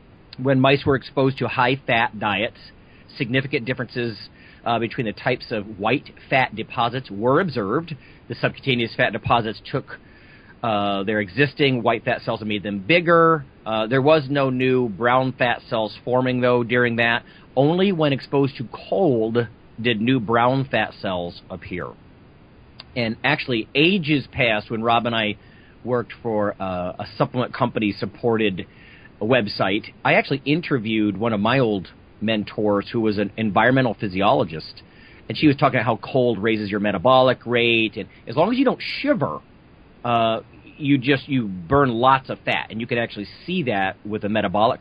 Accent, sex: American, male